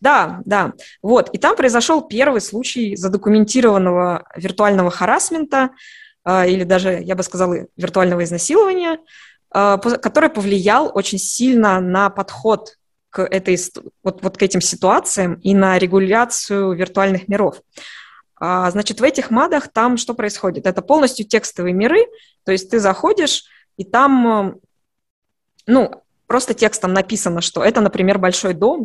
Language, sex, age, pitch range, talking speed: Russian, female, 20-39, 185-235 Hz, 130 wpm